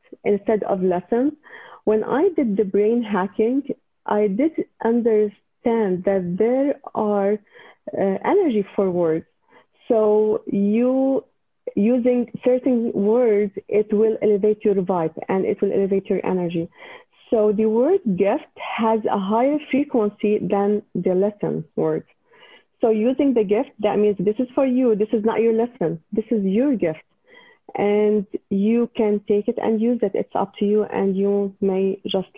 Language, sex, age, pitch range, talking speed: English, female, 40-59, 195-235 Hz, 150 wpm